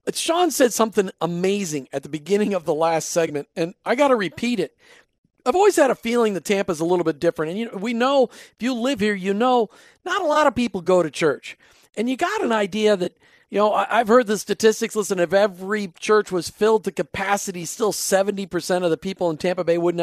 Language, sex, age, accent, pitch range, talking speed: English, male, 50-69, American, 190-260 Hz, 235 wpm